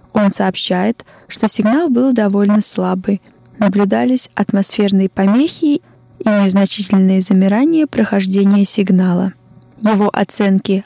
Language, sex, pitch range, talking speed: Russian, female, 190-220 Hz, 95 wpm